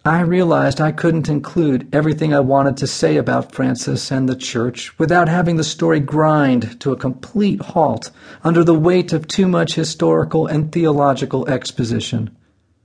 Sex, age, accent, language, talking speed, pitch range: male, 40-59, American, English, 160 wpm, 120-170 Hz